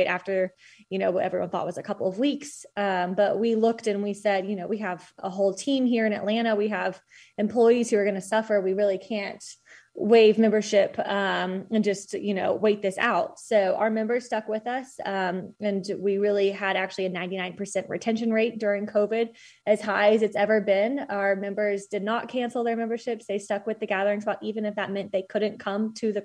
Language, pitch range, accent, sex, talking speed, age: English, 200-220 Hz, American, female, 215 wpm, 20-39